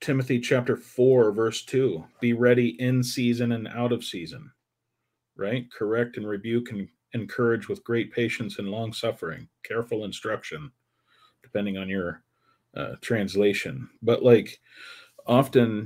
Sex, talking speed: male, 130 wpm